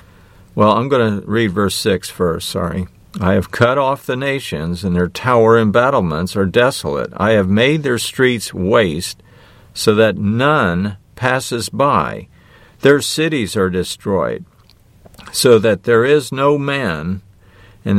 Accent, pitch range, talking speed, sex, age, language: American, 95-130 Hz, 145 wpm, male, 50-69, English